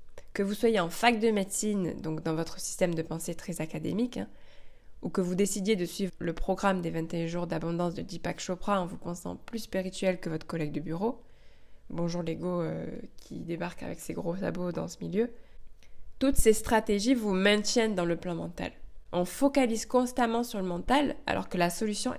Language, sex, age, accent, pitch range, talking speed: French, female, 20-39, French, 170-230 Hz, 195 wpm